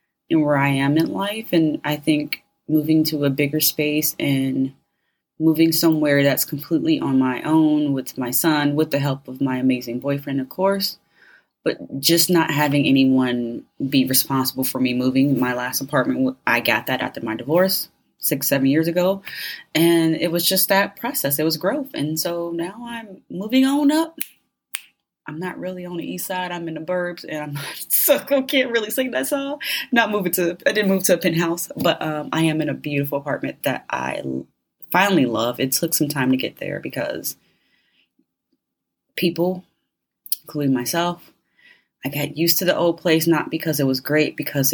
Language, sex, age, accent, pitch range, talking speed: English, female, 20-39, American, 135-180 Hz, 185 wpm